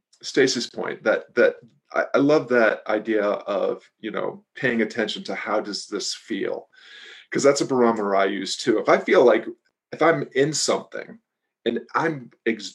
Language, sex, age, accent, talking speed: English, male, 40-59, American, 175 wpm